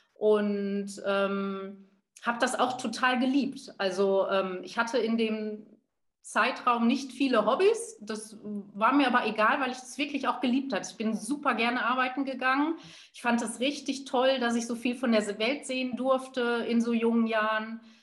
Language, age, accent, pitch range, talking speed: German, 30-49, German, 210-260 Hz, 175 wpm